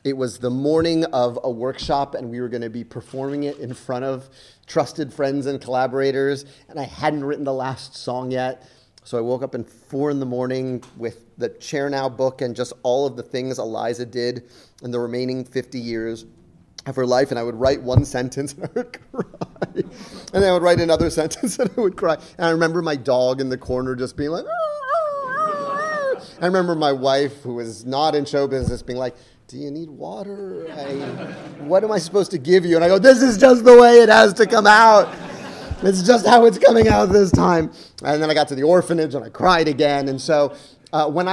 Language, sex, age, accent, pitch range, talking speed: English, male, 30-49, American, 120-160 Hz, 225 wpm